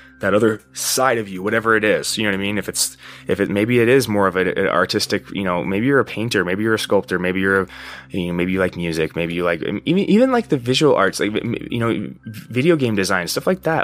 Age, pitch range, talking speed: 20-39, 85-130 Hz, 265 wpm